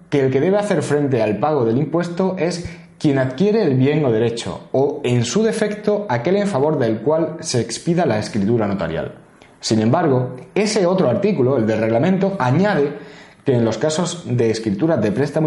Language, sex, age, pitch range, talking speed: Spanish, male, 30-49, 125-180 Hz, 185 wpm